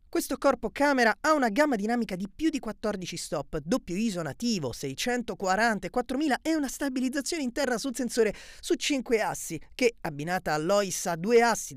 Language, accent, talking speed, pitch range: Italian, native, 165 wpm, 185-255 Hz